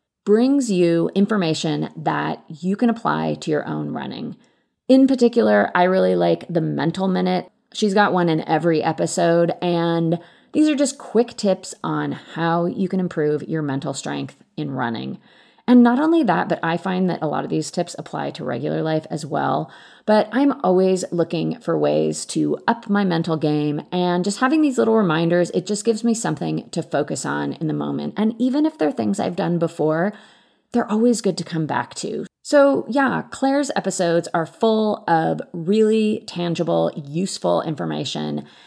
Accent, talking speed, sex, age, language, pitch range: American, 175 wpm, female, 30-49, English, 160-230 Hz